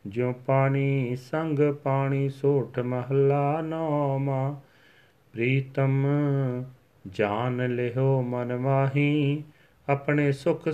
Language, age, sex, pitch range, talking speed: Punjabi, 40-59, male, 135-170 Hz, 75 wpm